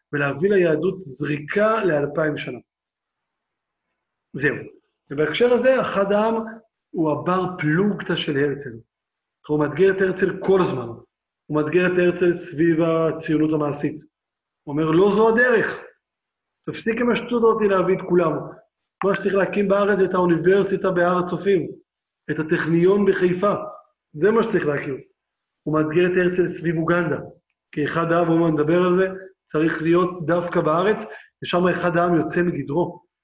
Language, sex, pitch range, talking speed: Hebrew, male, 155-190 Hz, 140 wpm